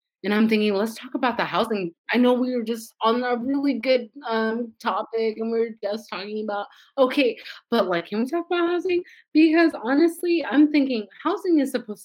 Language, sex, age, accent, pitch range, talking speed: English, female, 30-49, American, 180-275 Hz, 200 wpm